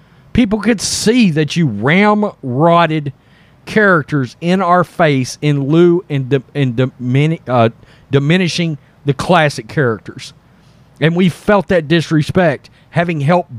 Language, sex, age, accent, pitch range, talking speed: English, male, 40-59, American, 150-210 Hz, 130 wpm